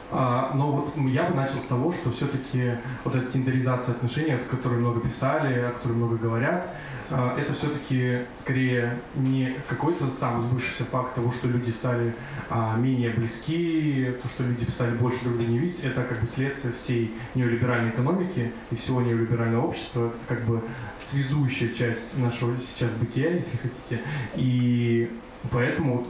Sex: male